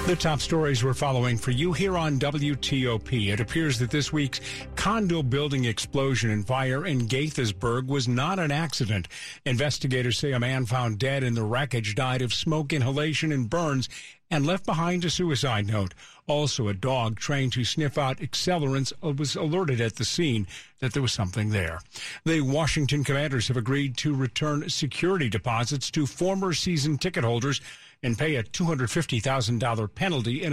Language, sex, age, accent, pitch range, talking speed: English, male, 50-69, American, 125-155 Hz, 165 wpm